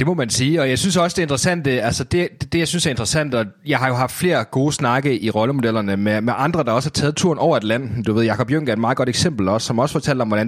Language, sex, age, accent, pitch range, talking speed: Danish, male, 30-49, native, 115-155 Hz, 305 wpm